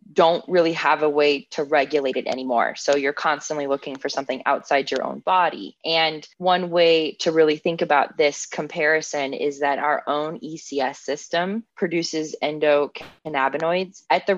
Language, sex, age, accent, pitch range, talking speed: English, female, 20-39, American, 140-175 Hz, 160 wpm